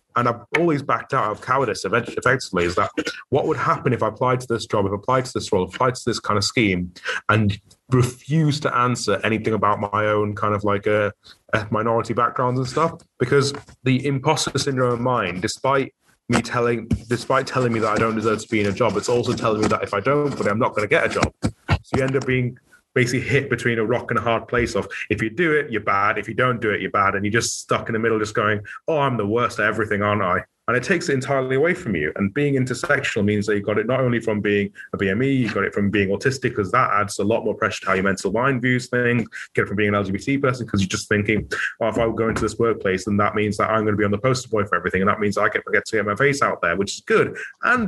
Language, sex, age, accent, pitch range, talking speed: English, male, 30-49, British, 105-125 Hz, 280 wpm